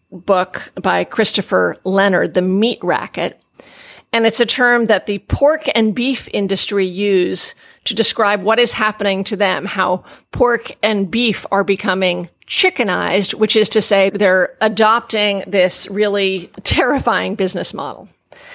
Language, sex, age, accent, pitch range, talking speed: English, female, 40-59, American, 195-240 Hz, 140 wpm